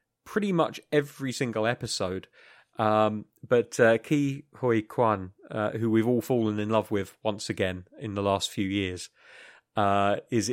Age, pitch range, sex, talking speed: 30-49, 100-120 Hz, male, 160 wpm